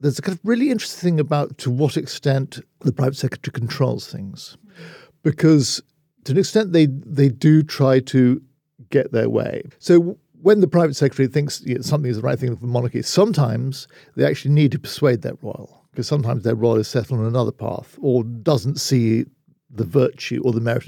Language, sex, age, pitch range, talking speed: English, male, 50-69, 120-150 Hz, 200 wpm